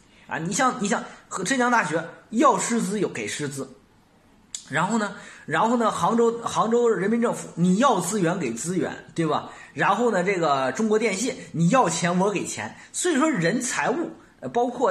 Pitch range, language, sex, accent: 170-235 Hz, Chinese, male, native